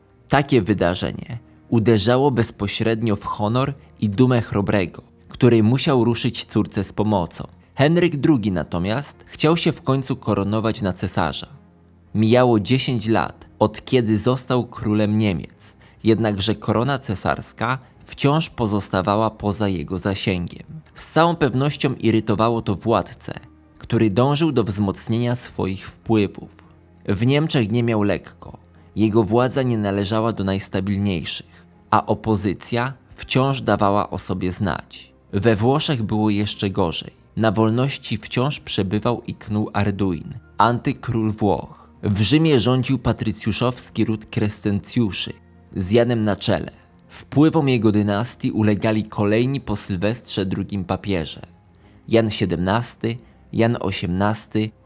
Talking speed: 120 wpm